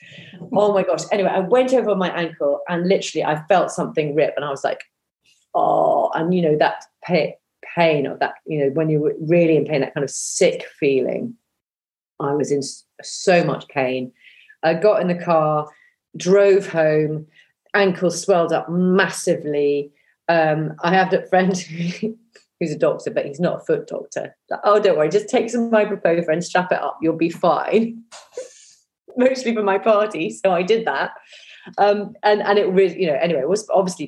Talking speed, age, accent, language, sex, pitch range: 185 wpm, 30-49, British, English, female, 155-210 Hz